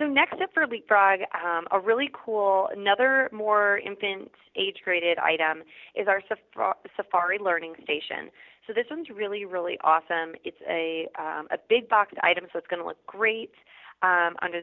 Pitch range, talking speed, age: 180-240 Hz, 165 wpm, 30-49